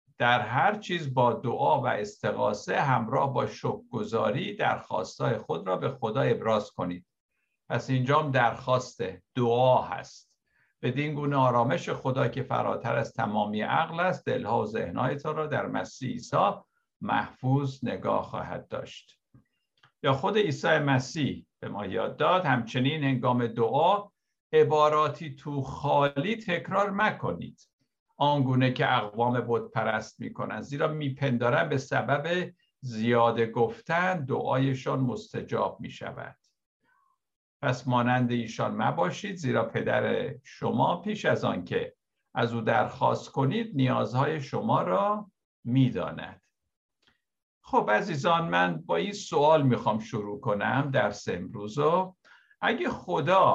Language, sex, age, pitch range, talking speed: Persian, male, 60-79, 120-160 Hz, 120 wpm